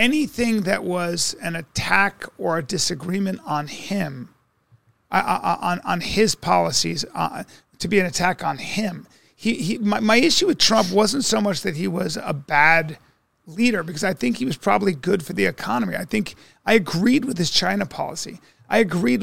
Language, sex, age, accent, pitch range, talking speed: English, male, 40-59, American, 170-220 Hz, 180 wpm